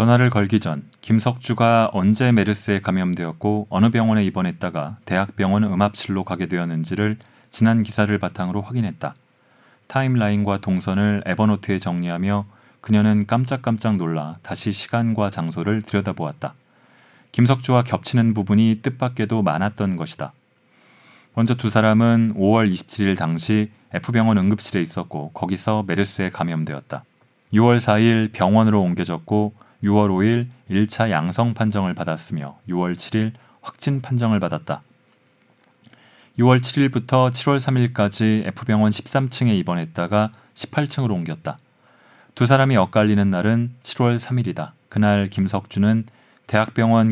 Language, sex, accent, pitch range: Korean, male, native, 95-115 Hz